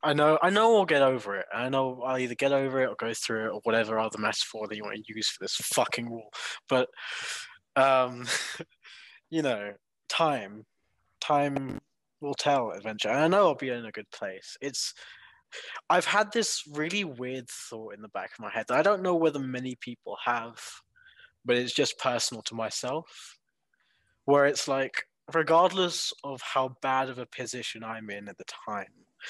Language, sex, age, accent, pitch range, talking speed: English, male, 20-39, British, 110-140 Hz, 185 wpm